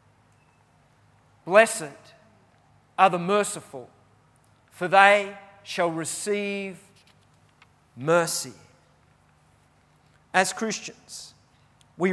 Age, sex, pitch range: 40-59, male, 120-175 Hz